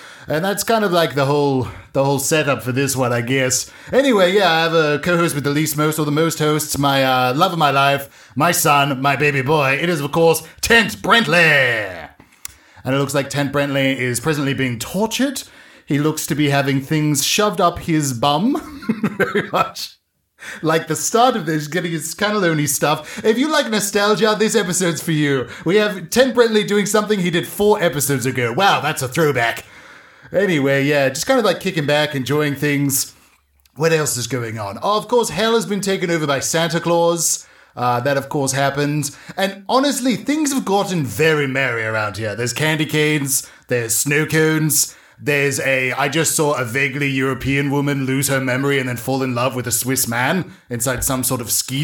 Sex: male